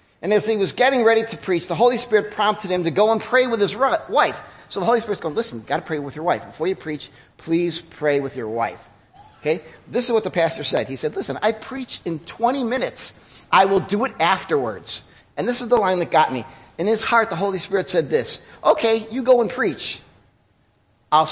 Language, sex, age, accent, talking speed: English, male, 40-59, American, 235 wpm